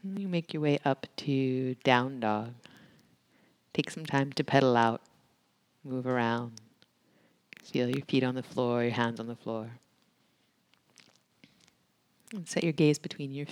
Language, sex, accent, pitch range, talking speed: English, female, American, 125-150 Hz, 145 wpm